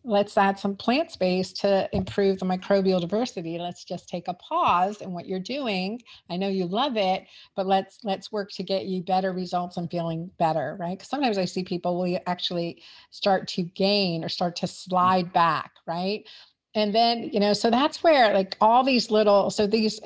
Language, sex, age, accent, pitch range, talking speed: English, female, 50-69, American, 175-210 Hz, 200 wpm